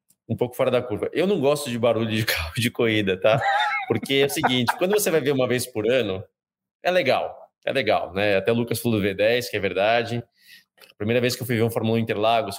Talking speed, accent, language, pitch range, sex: 250 wpm, Brazilian, Portuguese, 105-130 Hz, male